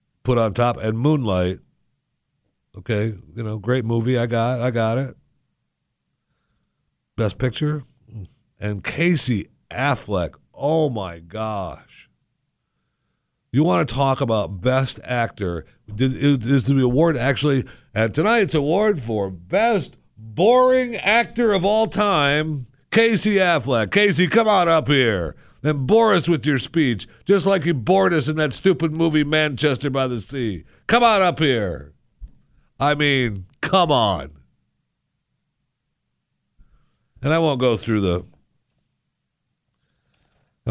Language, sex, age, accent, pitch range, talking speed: English, male, 50-69, American, 100-150 Hz, 130 wpm